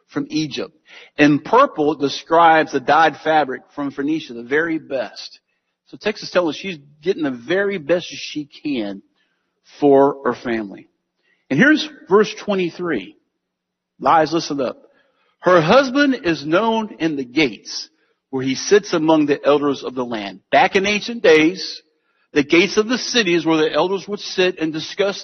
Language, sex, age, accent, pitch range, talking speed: English, male, 50-69, American, 140-215 Hz, 160 wpm